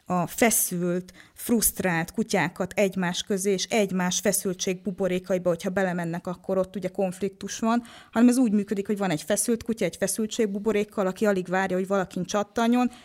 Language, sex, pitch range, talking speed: Hungarian, female, 180-210 Hz, 150 wpm